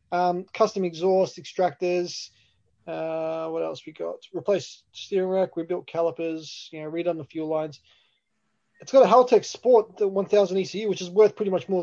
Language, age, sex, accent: English, 20-39, male, Australian